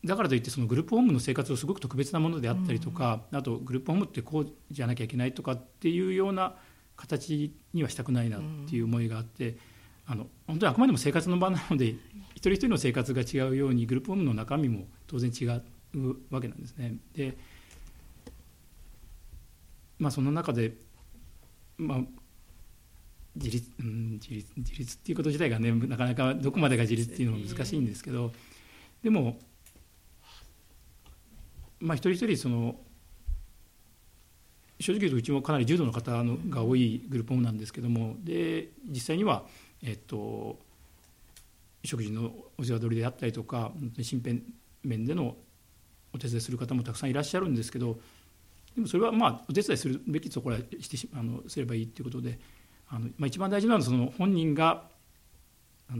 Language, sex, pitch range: Japanese, male, 110-145 Hz